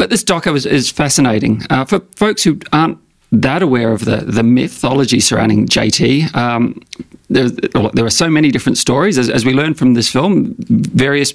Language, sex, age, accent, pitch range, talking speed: English, male, 40-59, Australian, 115-145 Hz, 185 wpm